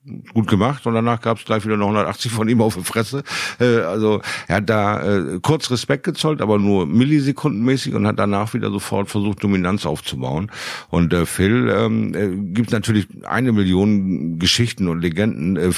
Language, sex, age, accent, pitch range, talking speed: German, male, 50-69, German, 85-110 Hz, 185 wpm